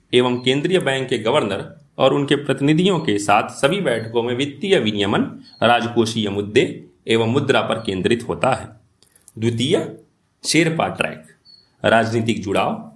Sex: male